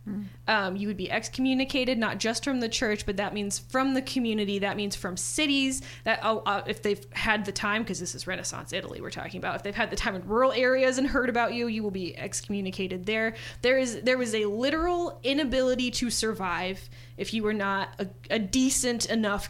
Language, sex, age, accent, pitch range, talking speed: English, female, 20-39, American, 185-235 Hz, 210 wpm